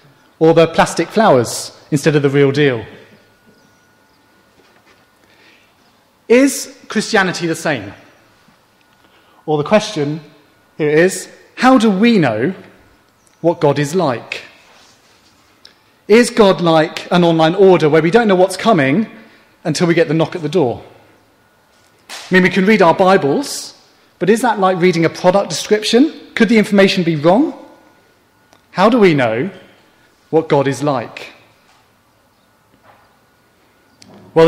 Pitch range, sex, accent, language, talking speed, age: 150-195 Hz, male, British, English, 130 wpm, 30-49